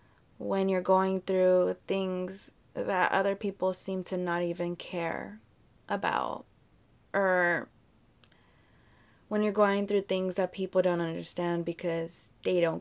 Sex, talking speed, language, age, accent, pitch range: female, 125 wpm, English, 20-39, American, 175-190 Hz